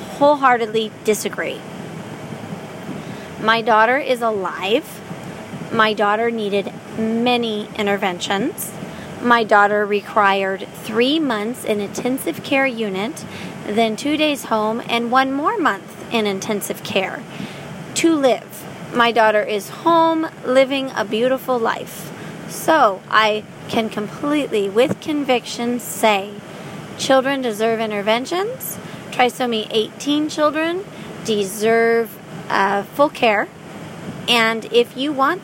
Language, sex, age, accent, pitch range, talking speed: English, female, 30-49, American, 200-245 Hz, 105 wpm